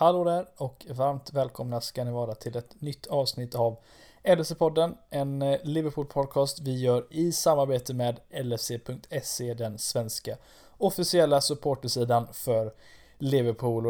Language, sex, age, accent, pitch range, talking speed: Swedish, male, 20-39, native, 135-155 Hz, 120 wpm